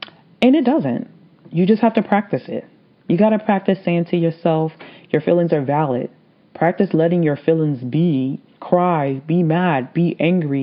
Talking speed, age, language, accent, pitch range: 170 wpm, 30-49, English, American, 155-190 Hz